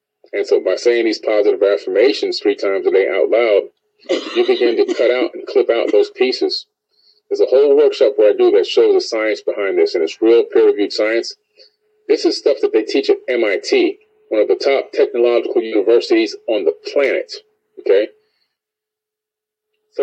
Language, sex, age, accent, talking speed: English, male, 30-49, American, 180 wpm